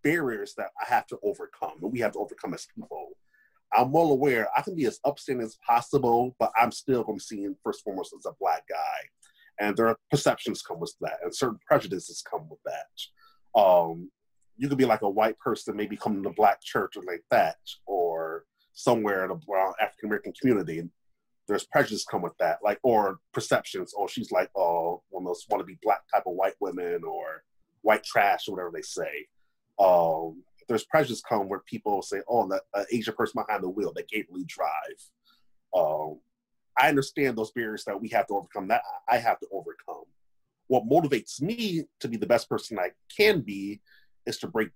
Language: English